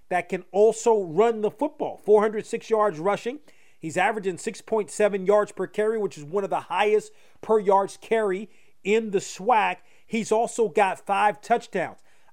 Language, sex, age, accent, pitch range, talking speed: English, male, 40-59, American, 165-210 Hz, 155 wpm